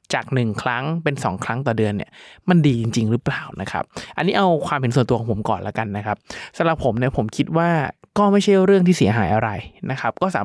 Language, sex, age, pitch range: Thai, male, 20-39, 120-155 Hz